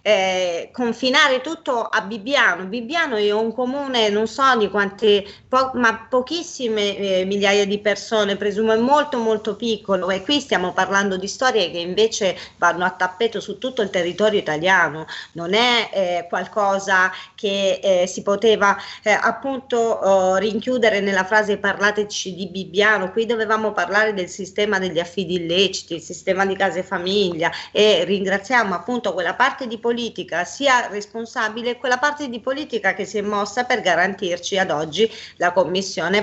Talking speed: 155 wpm